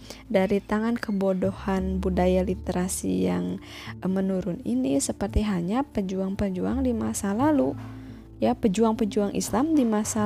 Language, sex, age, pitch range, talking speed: Indonesian, female, 20-39, 180-220 Hz, 110 wpm